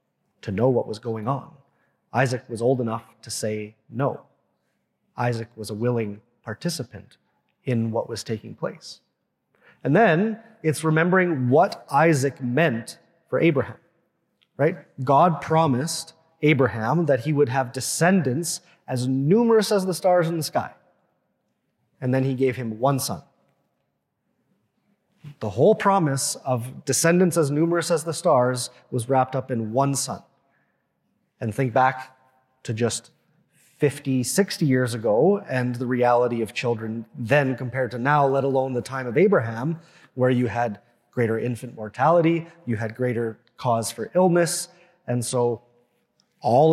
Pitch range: 120-160 Hz